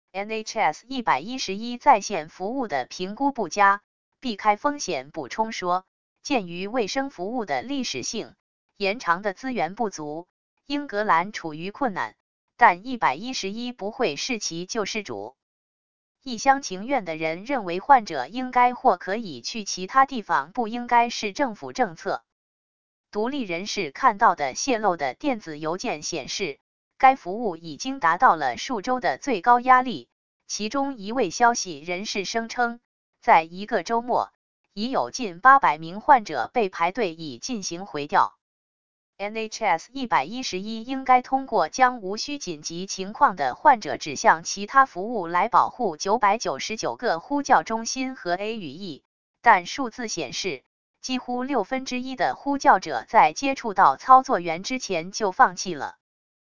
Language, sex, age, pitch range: English, female, 20-39, 190-255 Hz